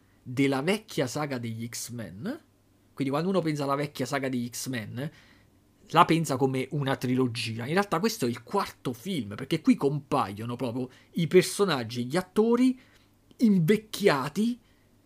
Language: Italian